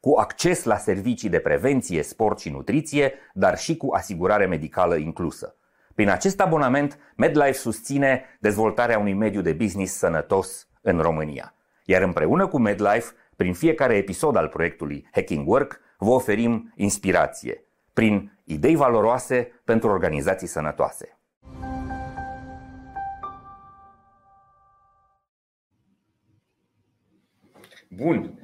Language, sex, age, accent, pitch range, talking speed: Romanian, male, 30-49, native, 110-165 Hz, 105 wpm